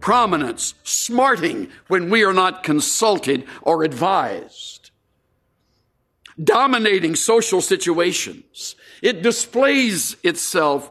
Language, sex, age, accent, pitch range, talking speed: English, male, 60-79, American, 160-240 Hz, 85 wpm